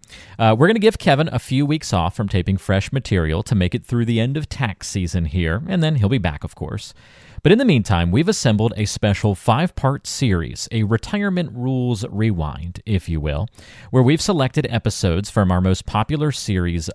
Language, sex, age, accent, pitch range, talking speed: English, male, 40-59, American, 95-130 Hz, 200 wpm